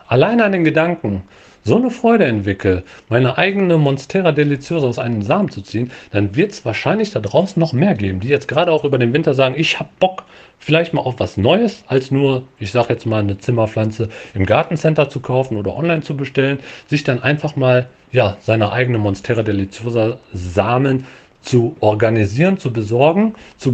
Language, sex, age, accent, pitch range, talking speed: German, male, 40-59, German, 110-165 Hz, 185 wpm